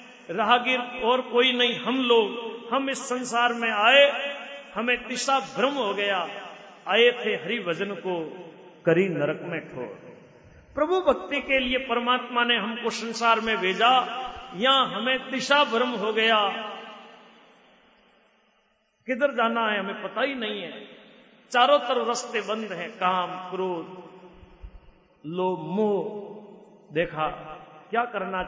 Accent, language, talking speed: native, Hindi, 130 wpm